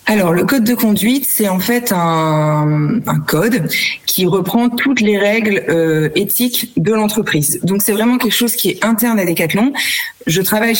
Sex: female